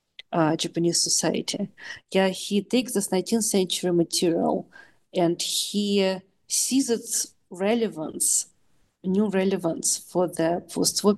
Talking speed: 115 wpm